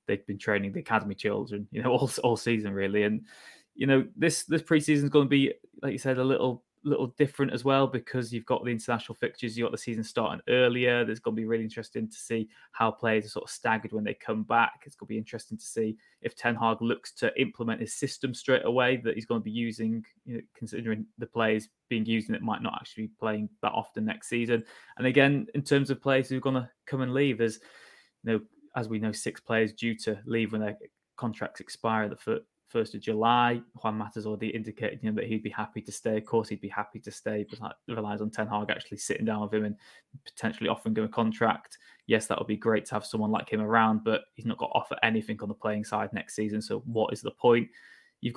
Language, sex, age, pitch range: English, male, 20-39, 110-125 Hz